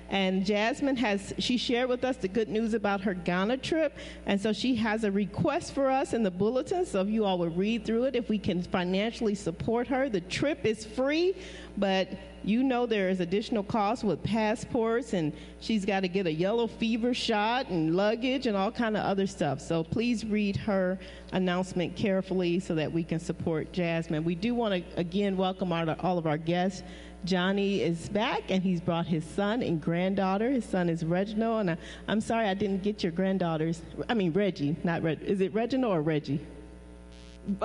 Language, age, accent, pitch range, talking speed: English, 40-59, American, 165-225 Hz, 195 wpm